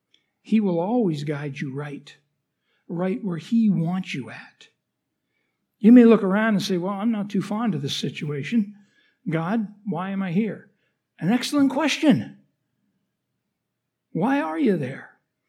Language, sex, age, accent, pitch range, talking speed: English, male, 60-79, American, 160-205 Hz, 145 wpm